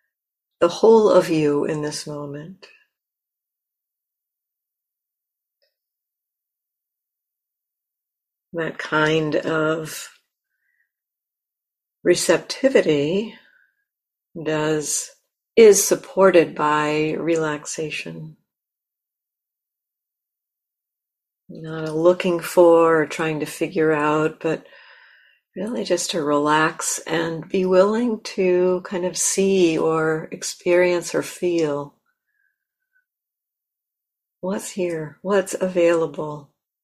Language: English